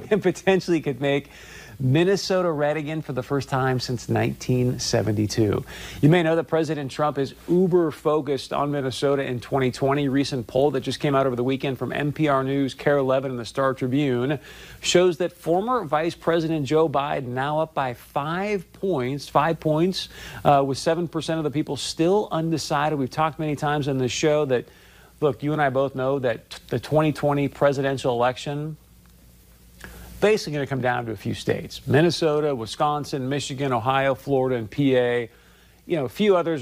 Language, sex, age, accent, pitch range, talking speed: English, male, 40-59, American, 130-155 Hz, 175 wpm